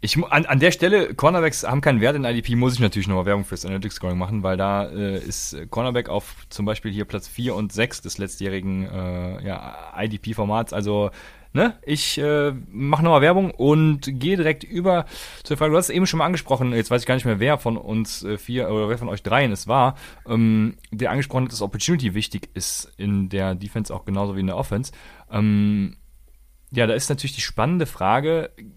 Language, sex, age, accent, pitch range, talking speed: German, male, 30-49, German, 105-135 Hz, 210 wpm